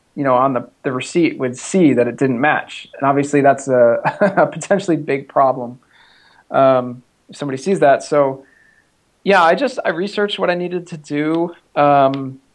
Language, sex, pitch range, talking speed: English, male, 135-170 Hz, 175 wpm